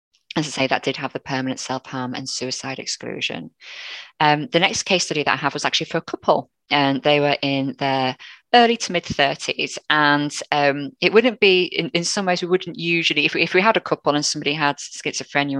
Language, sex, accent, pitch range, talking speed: English, female, British, 135-155 Hz, 220 wpm